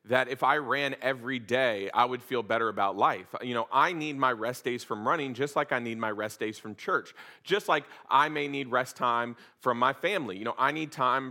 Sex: male